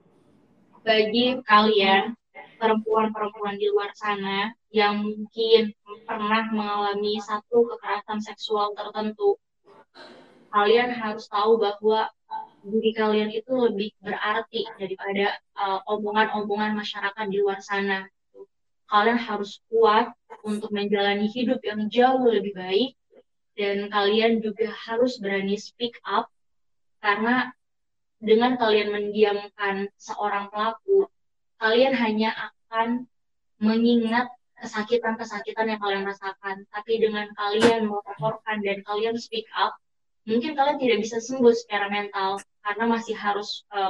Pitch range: 205-230 Hz